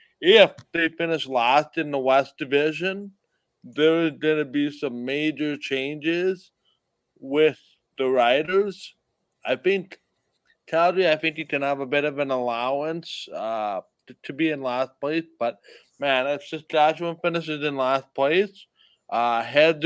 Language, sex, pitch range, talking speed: English, male, 135-165 Hz, 150 wpm